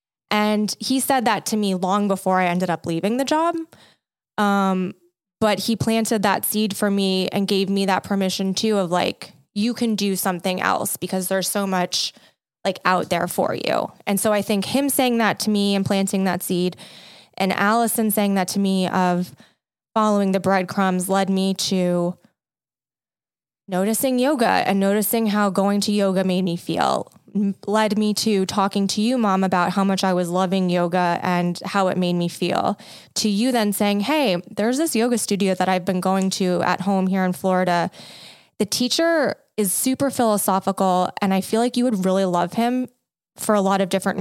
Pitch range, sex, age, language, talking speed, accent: 185-220 Hz, female, 20-39, English, 190 wpm, American